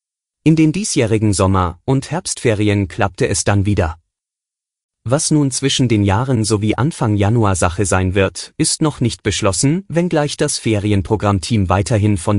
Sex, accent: male, German